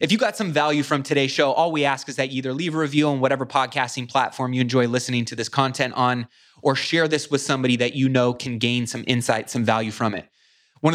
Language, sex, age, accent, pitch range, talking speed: English, male, 20-39, American, 125-150 Hz, 250 wpm